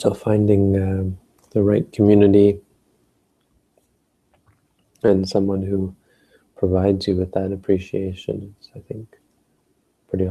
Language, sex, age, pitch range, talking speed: English, male, 20-39, 90-95 Hz, 105 wpm